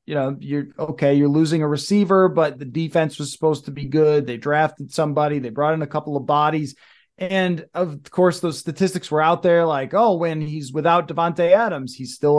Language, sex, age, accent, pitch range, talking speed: English, male, 20-39, American, 145-175 Hz, 210 wpm